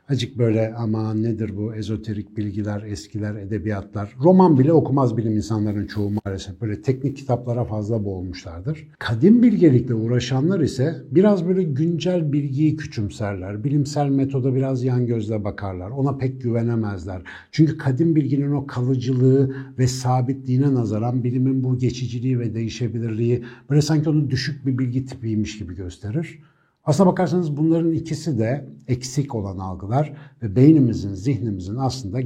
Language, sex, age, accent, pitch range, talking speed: Turkish, male, 60-79, native, 110-145 Hz, 135 wpm